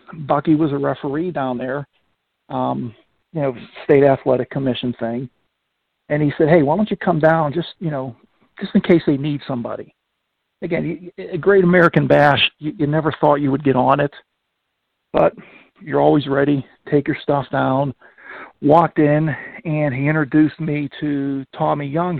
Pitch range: 130-155 Hz